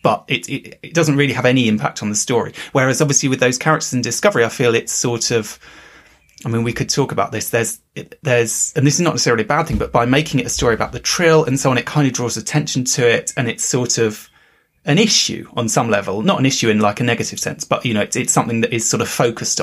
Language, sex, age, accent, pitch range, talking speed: English, male, 30-49, British, 115-150 Hz, 270 wpm